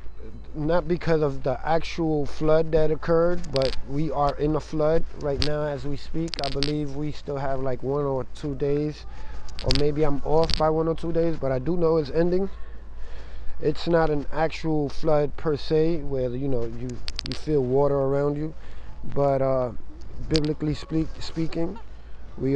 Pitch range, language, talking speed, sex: 125-155 Hz, English, 175 wpm, male